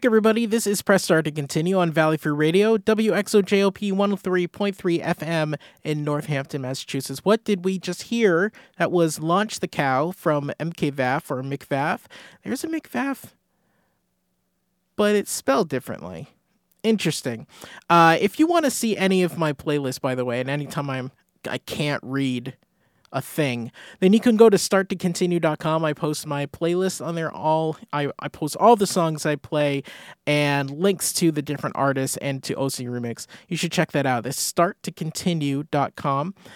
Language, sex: English, male